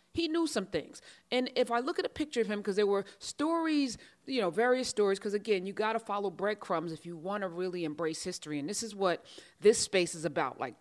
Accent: American